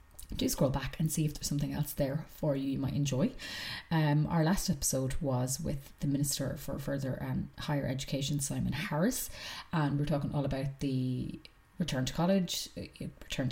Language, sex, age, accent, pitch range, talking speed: English, female, 30-49, Irish, 140-170 Hz, 180 wpm